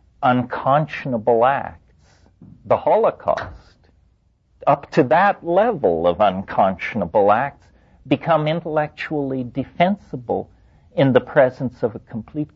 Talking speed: 95 wpm